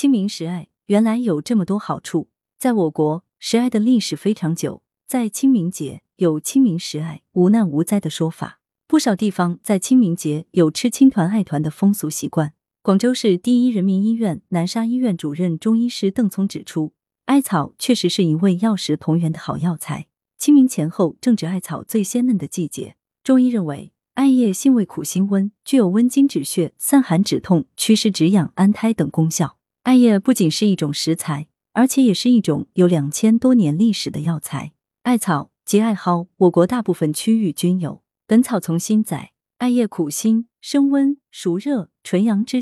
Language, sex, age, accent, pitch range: Chinese, female, 20-39, native, 165-235 Hz